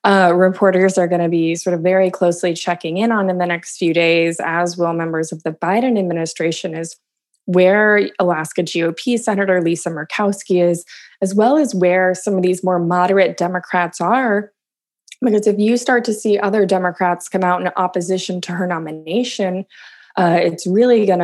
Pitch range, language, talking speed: 175-205 Hz, English, 180 wpm